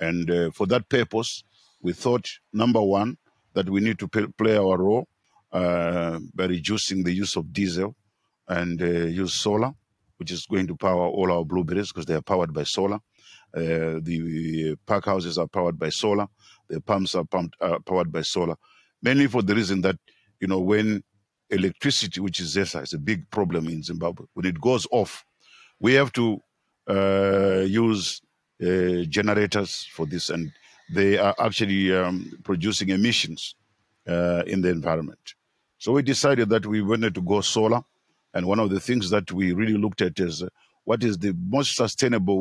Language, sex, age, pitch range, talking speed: English, male, 50-69, 90-110 Hz, 175 wpm